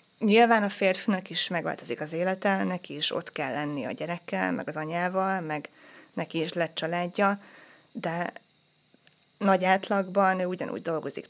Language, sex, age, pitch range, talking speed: Hungarian, female, 20-39, 175-205 Hz, 150 wpm